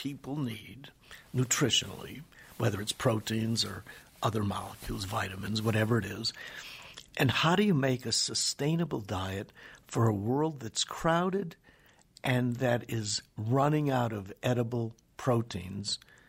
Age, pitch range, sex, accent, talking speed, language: 60-79, 105-150 Hz, male, American, 125 wpm, English